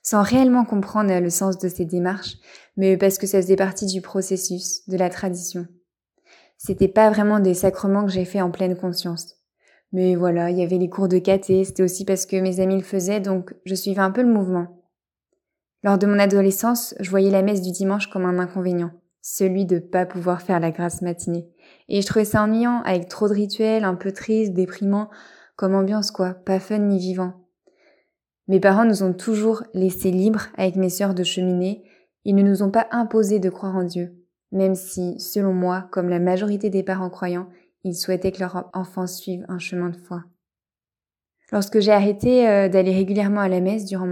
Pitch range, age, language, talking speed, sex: 180-200 Hz, 20-39, French, 200 wpm, female